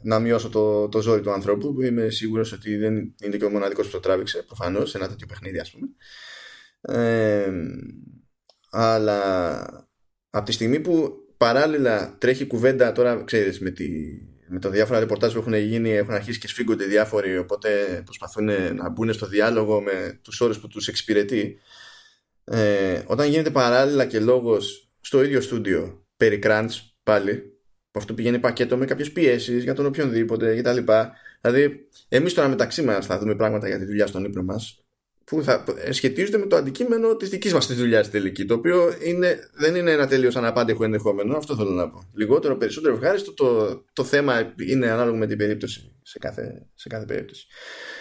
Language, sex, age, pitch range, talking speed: Greek, male, 20-39, 105-135 Hz, 170 wpm